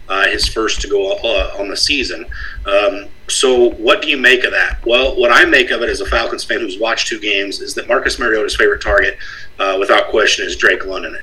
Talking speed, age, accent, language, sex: 230 wpm, 40-59, American, English, male